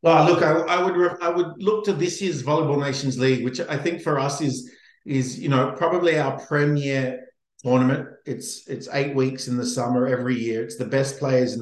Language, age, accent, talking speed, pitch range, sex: English, 50-69, Australian, 215 wpm, 125-155 Hz, male